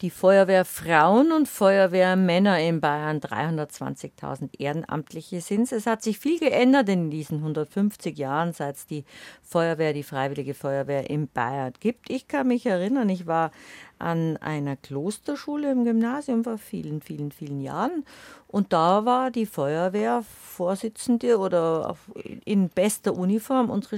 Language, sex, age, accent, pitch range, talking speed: German, female, 50-69, German, 150-225 Hz, 135 wpm